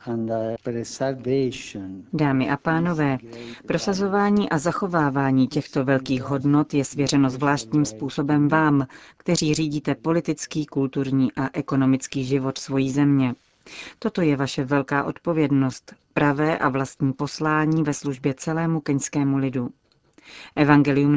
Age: 40-59